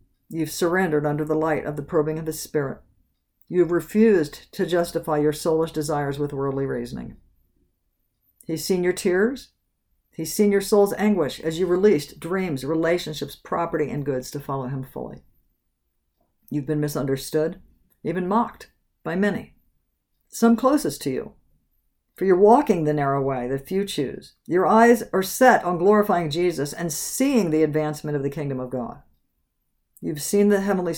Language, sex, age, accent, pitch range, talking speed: English, female, 50-69, American, 140-190 Hz, 160 wpm